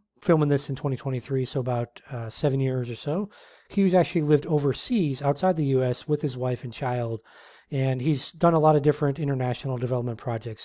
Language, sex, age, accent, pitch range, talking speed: English, male, 30-49, American, 125-150 Hz, 185 wpm